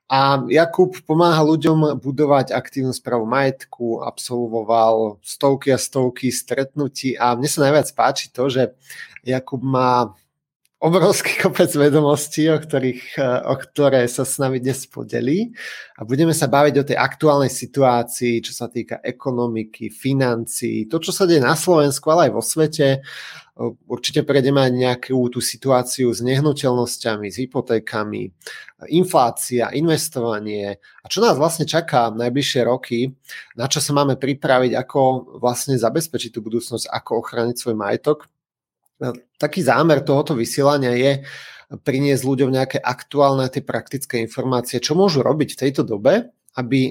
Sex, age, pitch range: male, 30-49, 120-145 Hz